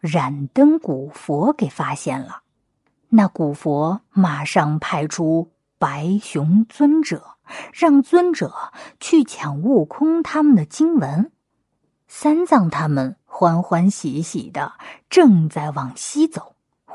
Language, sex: Chinese, female